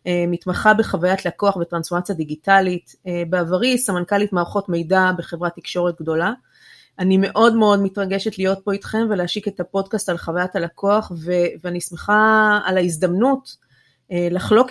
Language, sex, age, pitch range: Hebrew, female, 30-49, 180-230 Hz